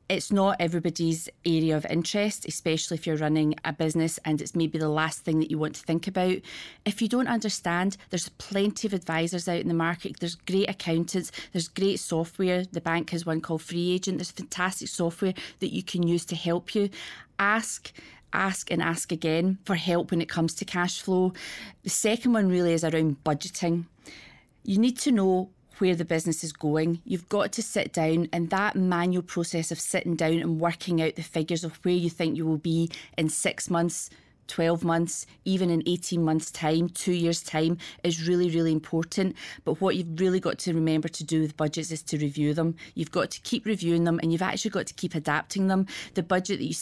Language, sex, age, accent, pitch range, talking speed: English, female, 30-49, British, 160-185 Hz, 210 wpm